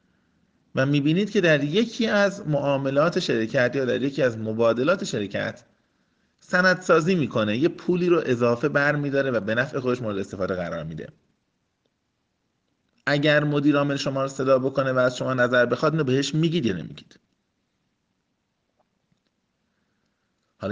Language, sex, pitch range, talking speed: Persian, male, 110-150 Hz, 135 wpm